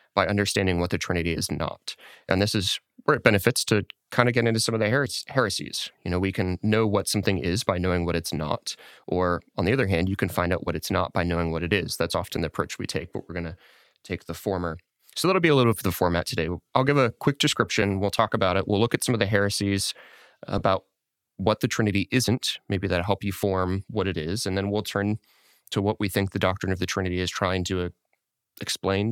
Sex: male